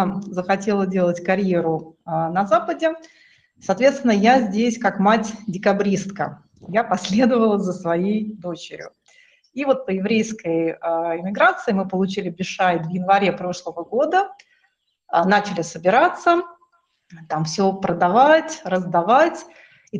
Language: Russian